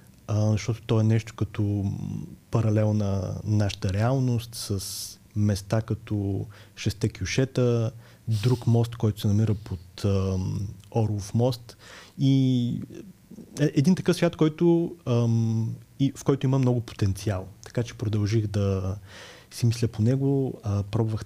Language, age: Bulgarian, 30-49